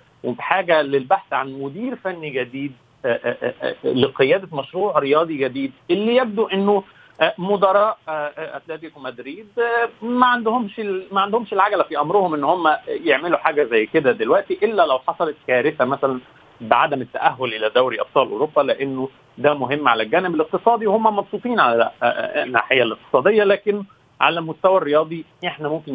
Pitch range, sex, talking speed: 140-200 Hz, male, 140 wpm